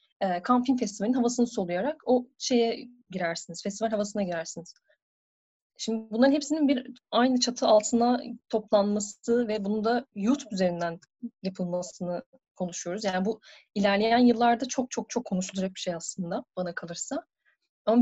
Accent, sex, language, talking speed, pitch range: native, female, Turkish, 130 wpm, 185-245 Hz